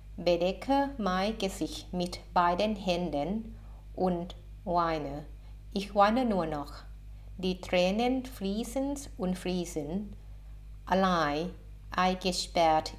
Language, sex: Thai, female